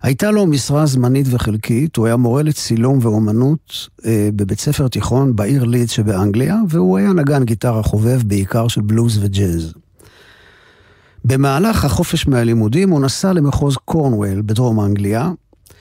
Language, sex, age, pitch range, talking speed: Hebrew, male, 50-69, 115-160 Hz, 135 wpm